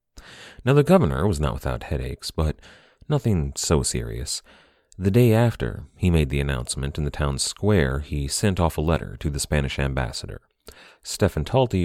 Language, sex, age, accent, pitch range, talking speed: English, male, 30-49, American, 70-100 Hz, 165 wpm